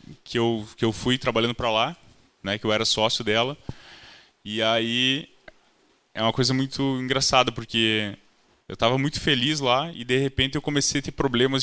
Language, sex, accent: Portuguese, male, Brazilian